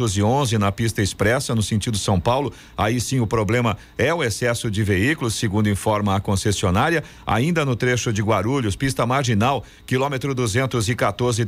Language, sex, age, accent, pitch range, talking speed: Portuguese, male, 50-69, Brazilian, 120-160 Hz, 155 wpm